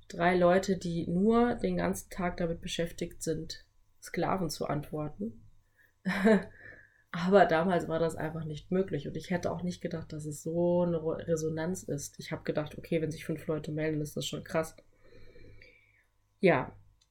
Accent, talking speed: German, 160 wpm